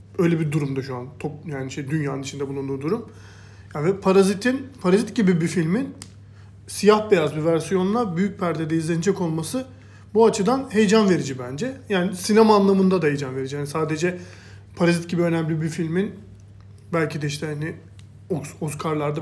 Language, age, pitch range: Turkish, 40-59, 140-185 Hz